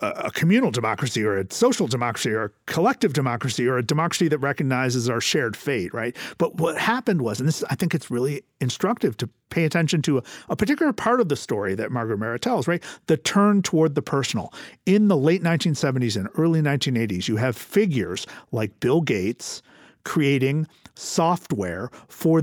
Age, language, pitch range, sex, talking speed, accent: 50-69, English, 135-190 Hz, male, 185 wpm, American